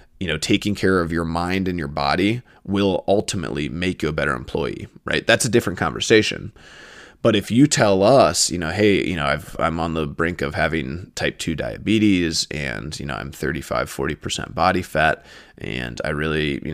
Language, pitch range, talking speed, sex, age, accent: English, 75-95 Hz, 185 wpm, male, 20-39, American